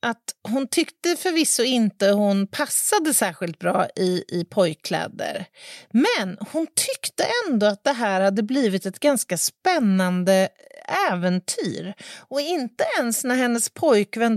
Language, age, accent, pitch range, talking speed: Swedish, 40-59, native, 185-275 Hz, 130 wpm